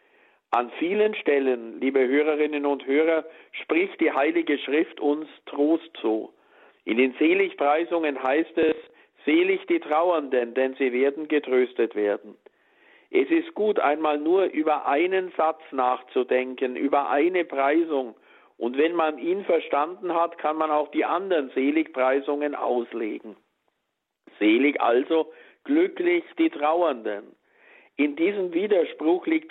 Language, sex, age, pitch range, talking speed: German, male, 50-69, 135-180 Hz, 125 wpm